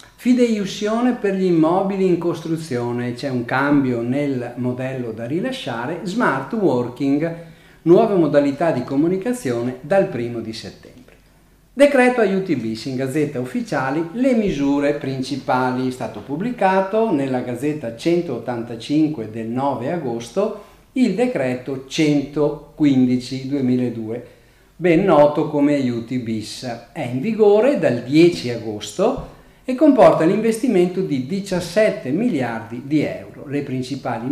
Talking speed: 115 wpm